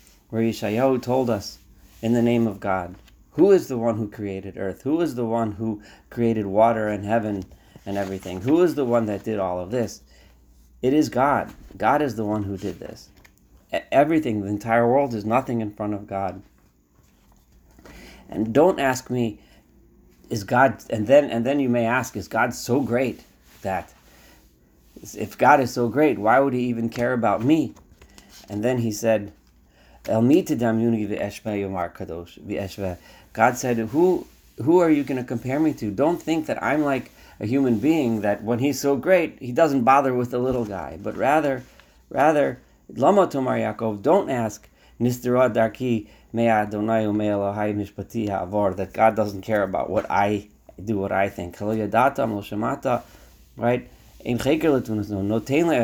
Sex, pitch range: male, 100-125 Hz